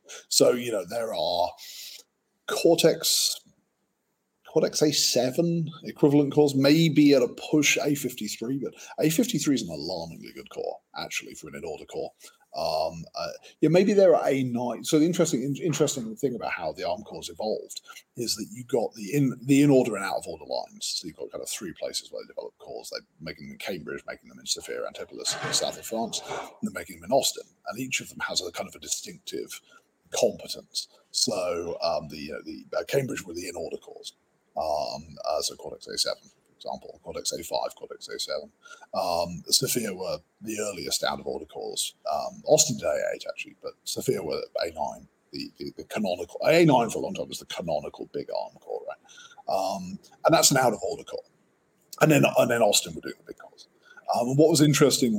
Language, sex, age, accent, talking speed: English, male, 40-59, British, 200 wpm